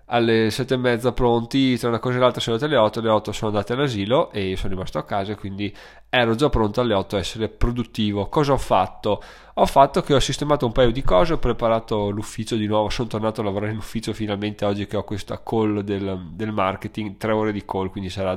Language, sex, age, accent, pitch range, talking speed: Italian, male, 20-39, native, 105-125 Hz, 230 wpm